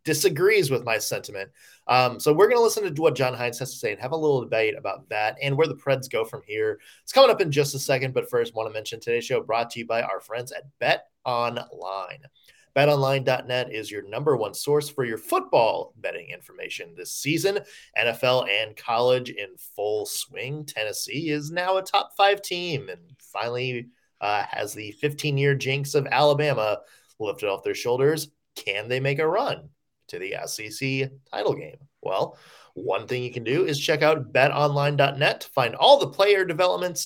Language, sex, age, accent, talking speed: English, male, 20-39, American, 190 wpm